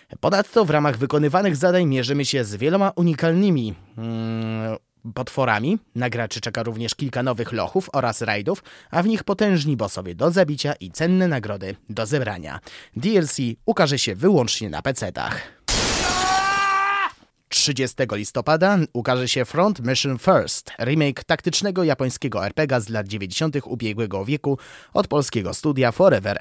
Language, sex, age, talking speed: Polish, male, 20-39, 130 wpm